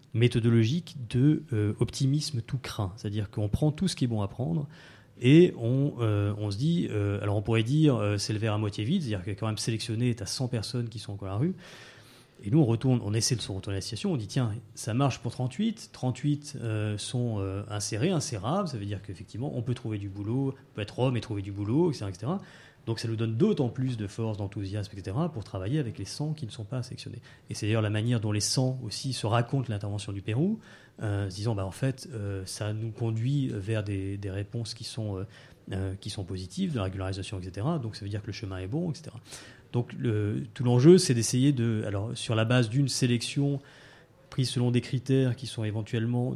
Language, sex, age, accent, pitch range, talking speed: French, male, 30-49, French, 105-135 Hz, 235 wpm